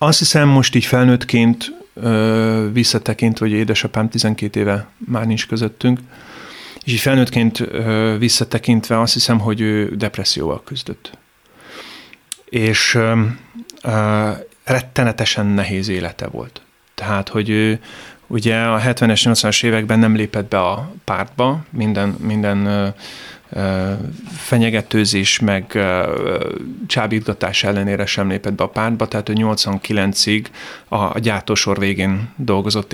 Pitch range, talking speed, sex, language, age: 100-115 Hz, 115 wpm, male, Hungarian, 30-49